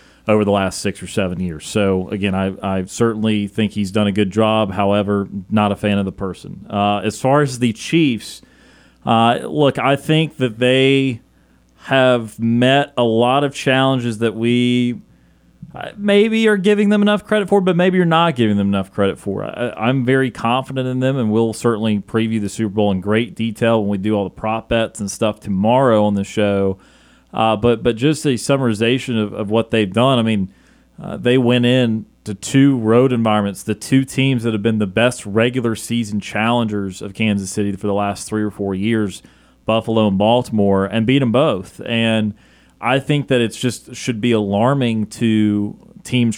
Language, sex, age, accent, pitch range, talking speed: English, male, 40-59, American, 105-125 Hz, 195 wpm